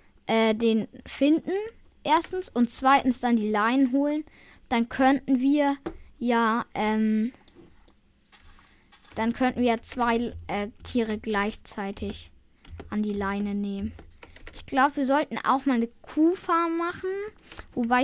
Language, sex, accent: German, female, German